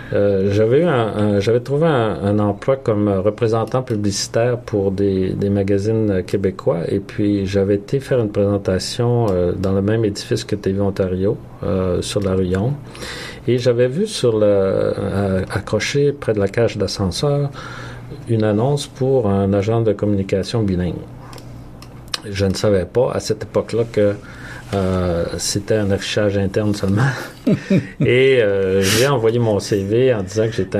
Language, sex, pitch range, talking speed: French, male, 95-115 Hz, 160 wpm